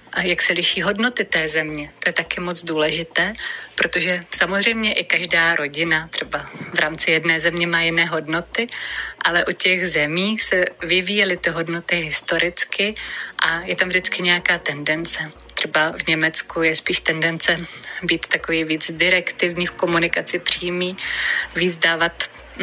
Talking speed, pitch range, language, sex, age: 145 wpm, 165-190 Hz, Czech, female, 20-39